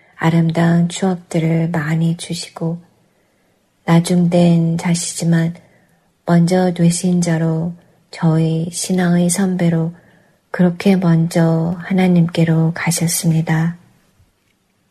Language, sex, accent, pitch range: Korean, female, native, 165-180 Hz